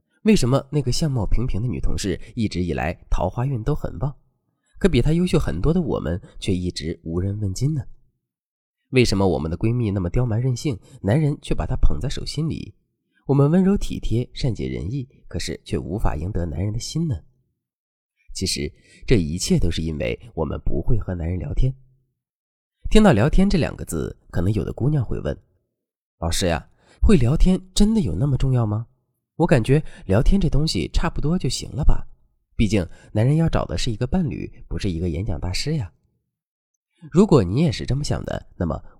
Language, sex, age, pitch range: Chinese, male, 30-49, 95-150 Hz